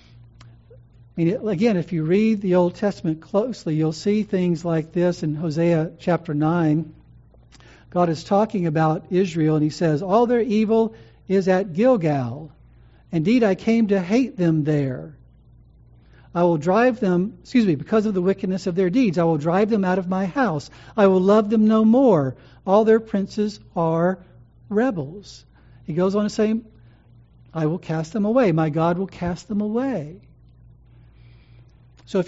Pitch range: 155-215 Hz